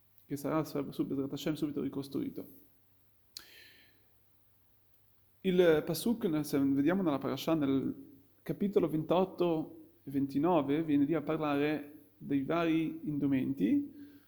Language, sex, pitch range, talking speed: Italian, male, 140-195 Hz, 95 wpm